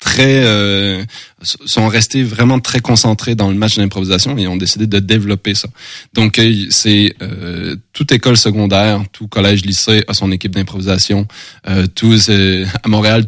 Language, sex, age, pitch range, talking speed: French, male, 20-39, 100-120 Hz, 165 wpm